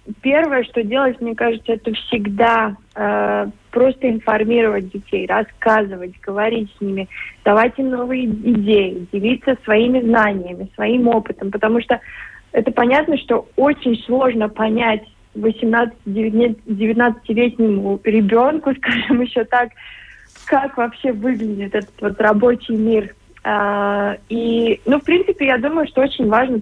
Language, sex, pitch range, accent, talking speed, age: Russian, female, 215-255 Hz, native, 120 wpm, 20-39